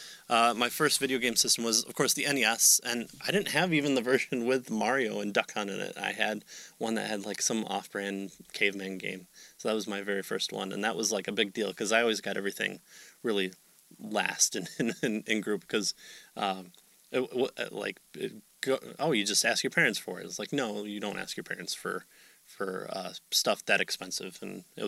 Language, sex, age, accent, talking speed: English, male, 20-39, American, 215 wpm